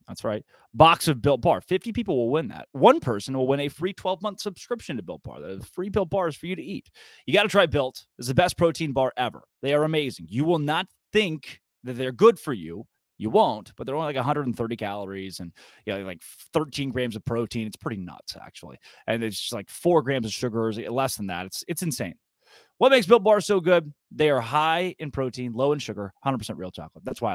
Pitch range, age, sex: 120-175 Hz, 30-49, male